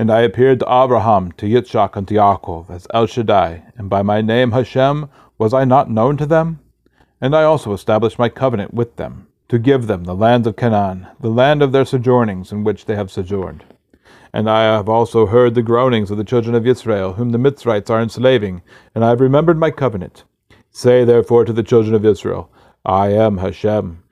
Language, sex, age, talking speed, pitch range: English, male, 40-59, 205 wpm, 105-125 Hz